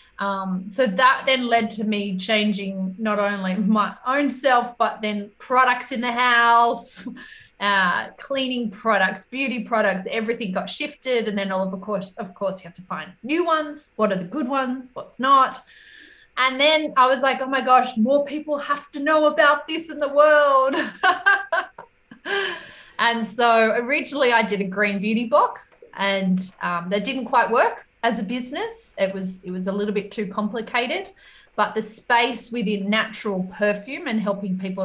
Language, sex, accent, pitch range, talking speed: English, female, Australian, 195-265 Hz, 175 wpm